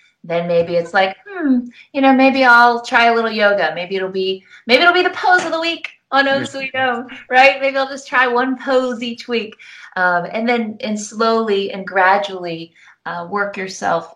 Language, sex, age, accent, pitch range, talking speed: English, female, 30-49, American, 160-225 Hz, 190 wpm